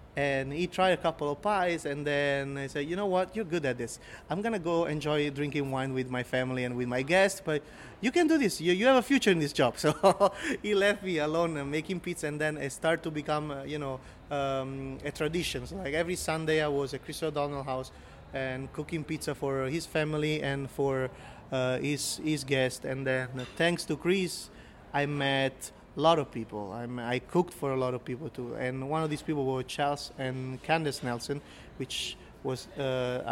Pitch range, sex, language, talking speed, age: 130-160 Hz, male, English, 215 wpm, 30-49